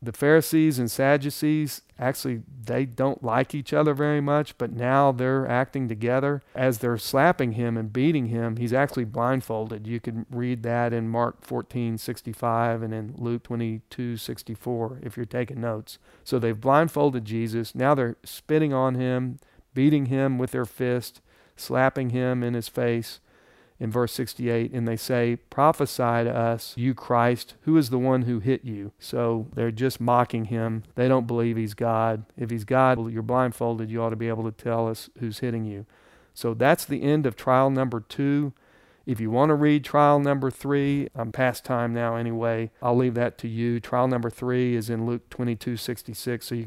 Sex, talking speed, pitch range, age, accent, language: male, 180 wpm, 115-130 Hz, 40-59, American, English